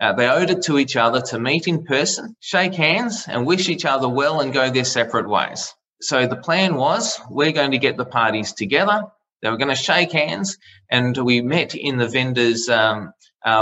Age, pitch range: 20-39, 125-165 Hz